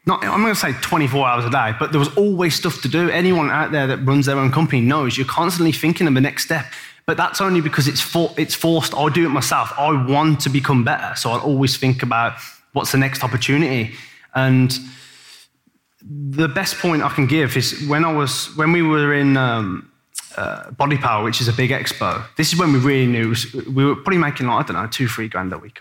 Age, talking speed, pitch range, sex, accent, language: 20-39, 235 wpm, 135-185 Hz, male, British, English